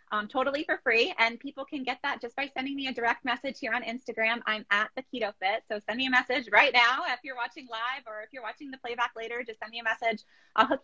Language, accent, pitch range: English, American, 225-265 Hz